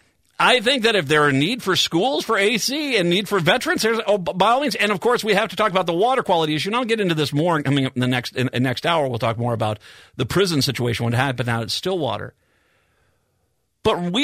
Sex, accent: male, American